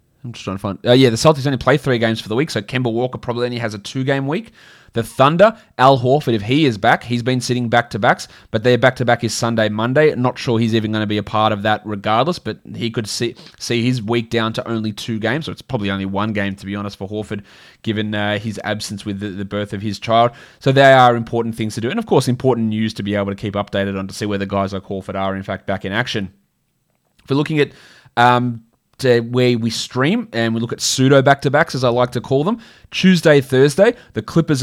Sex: male